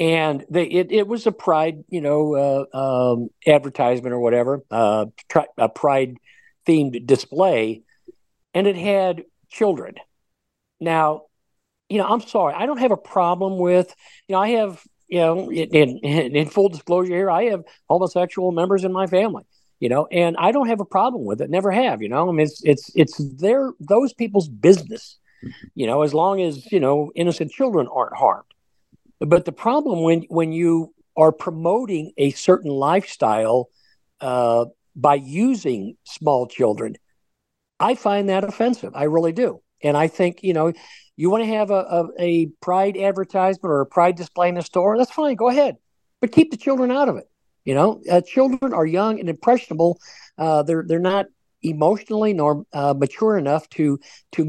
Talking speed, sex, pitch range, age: 175 wpm, male, 145-195 Hz, 50-69